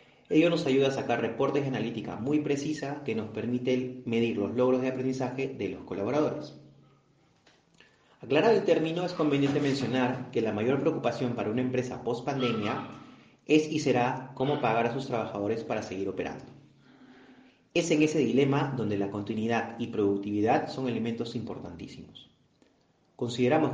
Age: 30-49